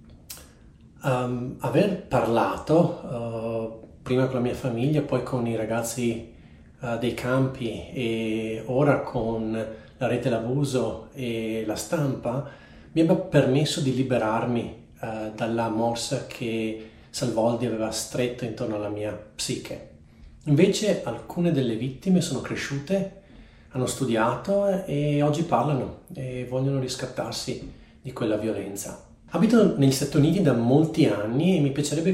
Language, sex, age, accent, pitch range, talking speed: Italian, male, 40-59, native, 115-145 Hz, 120 wpm